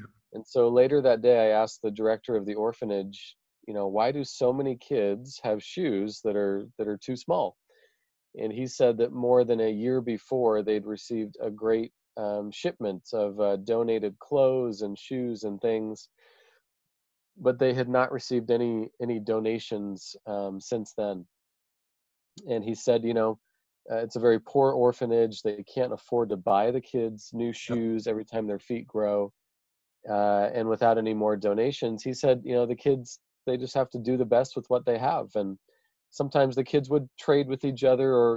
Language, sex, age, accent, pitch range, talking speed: English, male, 40-59, American, 105-125 Hz, 185 wpm